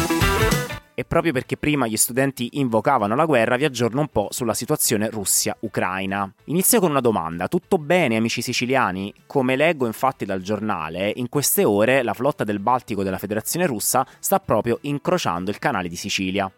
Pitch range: 105-140 Hz